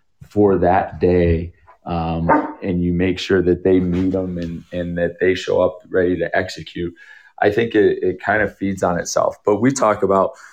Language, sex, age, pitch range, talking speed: English, male, 20-39, 85-100 Hz, 195 wpm